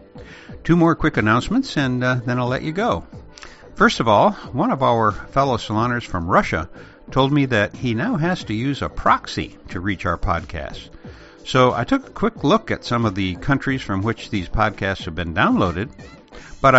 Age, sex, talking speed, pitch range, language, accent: 60-79, male, 195 wpm, 100-150 Hz, English, American